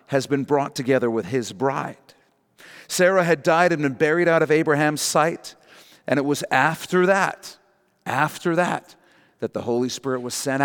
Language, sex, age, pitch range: English, male, 40-59, 125-170 Hz